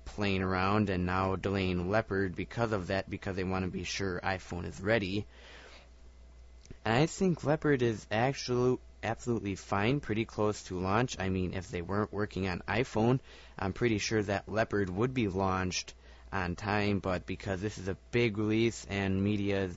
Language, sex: English, male